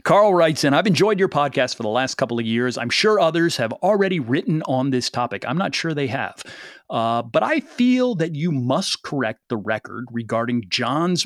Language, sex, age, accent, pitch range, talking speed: English, male, 40-59, American, 125-165 Hz, 210 wpm